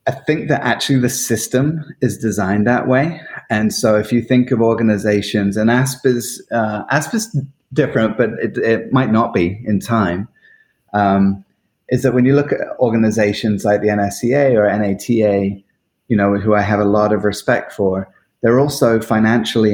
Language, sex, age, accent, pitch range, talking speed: English, male, 30-49, British, 100-115 Hz, 170 wpm